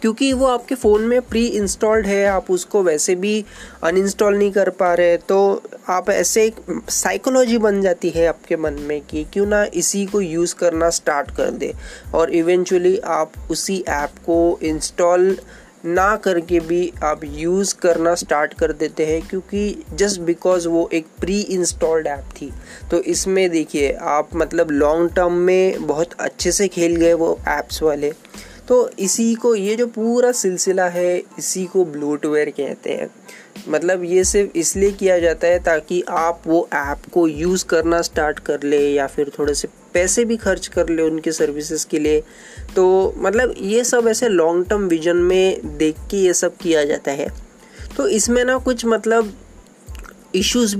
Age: 20-39